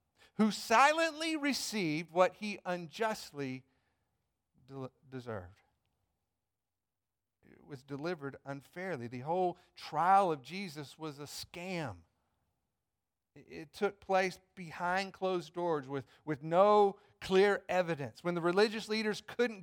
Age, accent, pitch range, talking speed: 50-69, American, 140-210 Hz, 110 wpm